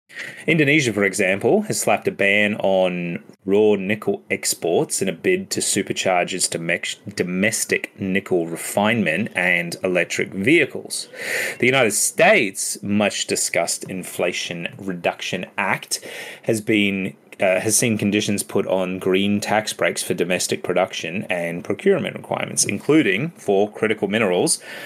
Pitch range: 95-115 Hz